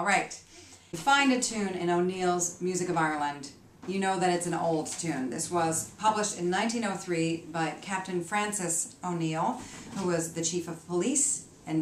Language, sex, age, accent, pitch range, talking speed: English, female, 40-59, American, 160-195 Hz, 170 wpm